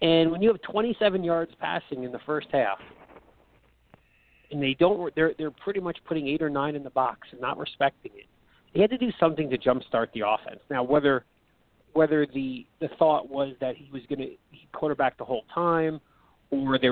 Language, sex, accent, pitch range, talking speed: English, male, American, 125-165 Hz, 200 wpm